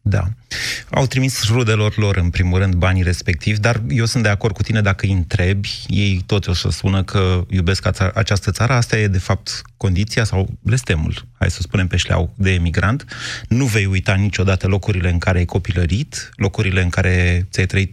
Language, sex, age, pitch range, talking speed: Romanian, male, 30-49, 95-115 Hz, 185 wpm